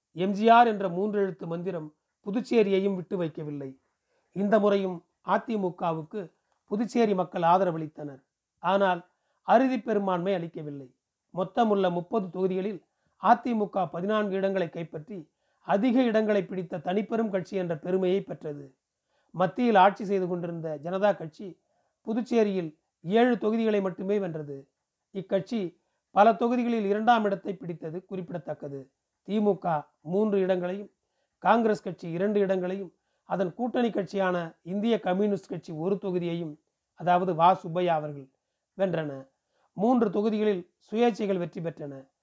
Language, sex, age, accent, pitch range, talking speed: Tamil, male, 40-59, native, 170-210 Hz, 110 wpm